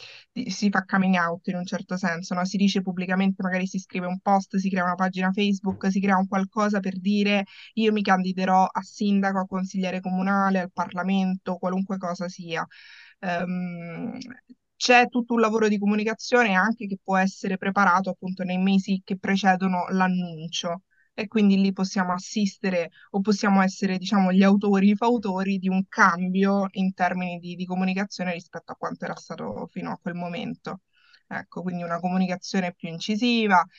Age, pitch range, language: 20-39, 180-200 Hz, Italian